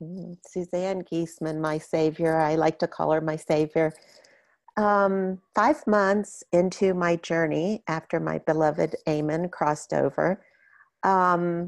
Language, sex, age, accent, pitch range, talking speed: English, female, 50-69, American, 155-185 Hz, 125 wpm